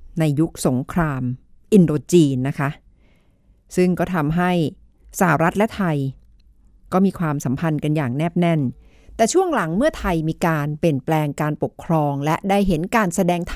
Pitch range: 155-210 Hz